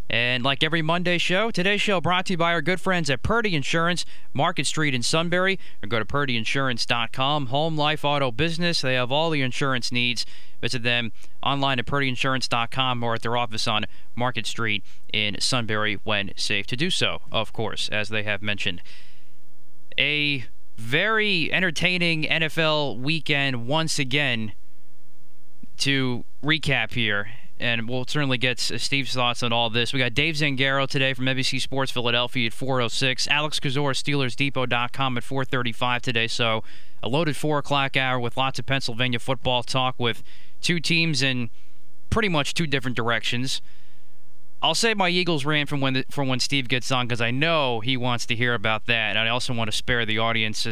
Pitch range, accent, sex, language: 120-150 Hz, American, male, English